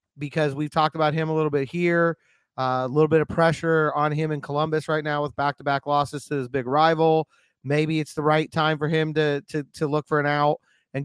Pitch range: 145-160 Hz